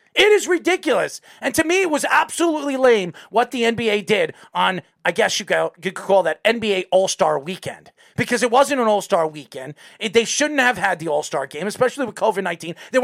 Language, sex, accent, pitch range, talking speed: English, male, American, 225-320 Hz, 190 wpm